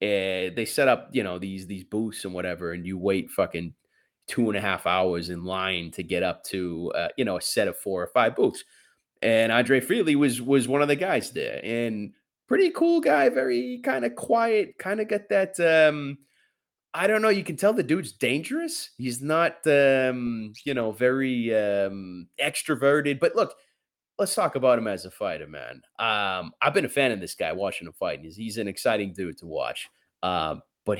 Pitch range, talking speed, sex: 100-155 Hz, 205 wpm, male